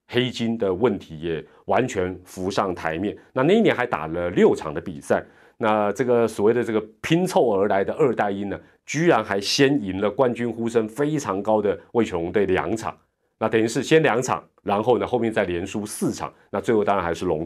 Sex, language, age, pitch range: male, Chinese, 30-49, 95-140 Hz